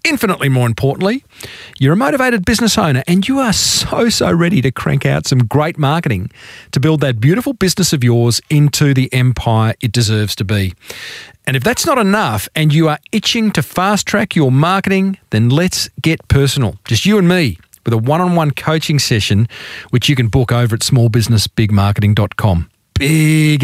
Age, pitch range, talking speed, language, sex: 40-59, 130-185 Hz, 175 wpm, English, male